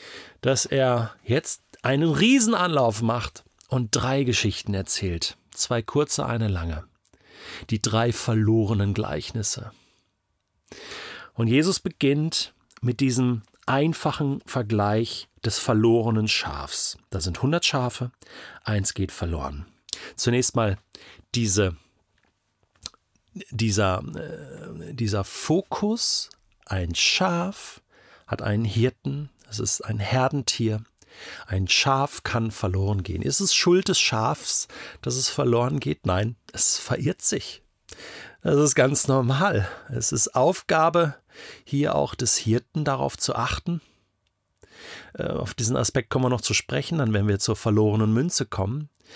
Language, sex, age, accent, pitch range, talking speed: German, male, 40-59, German, 105-135 Hz, 115 wpm